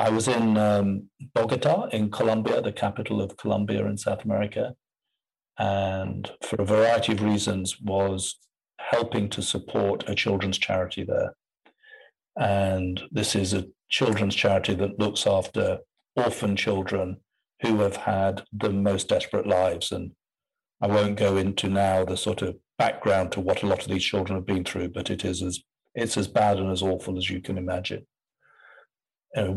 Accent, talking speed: British, 160 wpm